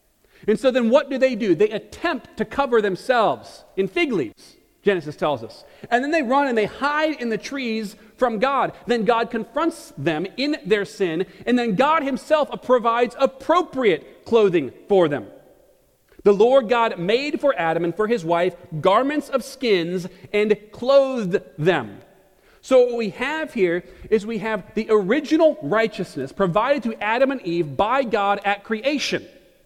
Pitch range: 210-280 Hz